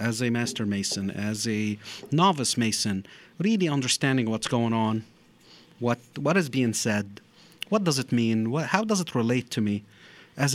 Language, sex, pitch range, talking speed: English, male, 115-150 Hz, 170 wpm